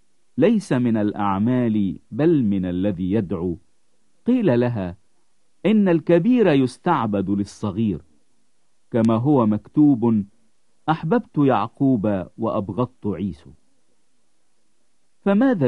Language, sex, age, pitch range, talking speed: English, male, 50-69, 105-155 Hz, 80 wpm